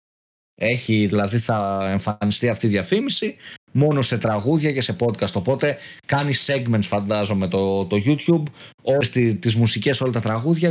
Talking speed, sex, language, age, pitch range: 145 wpm, male, Greek, 20-39, 110-155 Hz